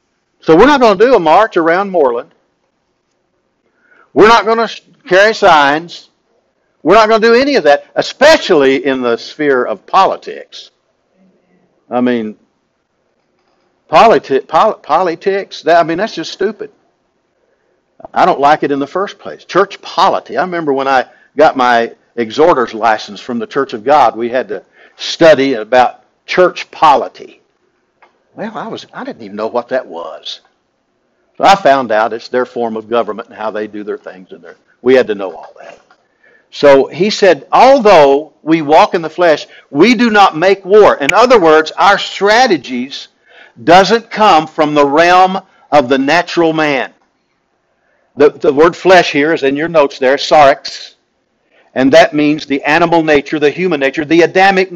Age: 60-79